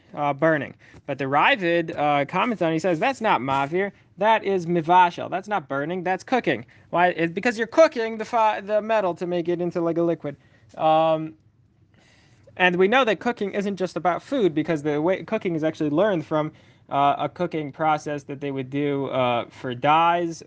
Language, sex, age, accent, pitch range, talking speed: English, male, 20-39, American, 145-190 Hz, 195 wpm